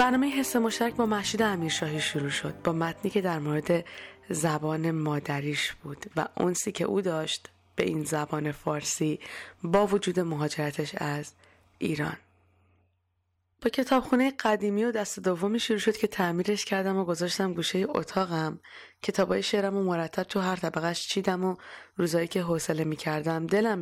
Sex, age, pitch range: female, 20-39, 155-200 Hz